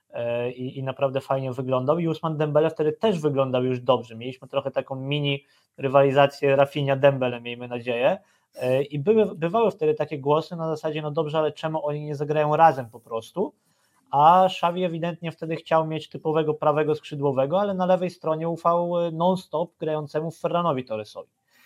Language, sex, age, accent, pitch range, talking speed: Polish, male, 20-39, native, 135-165 Hz, 160 wpm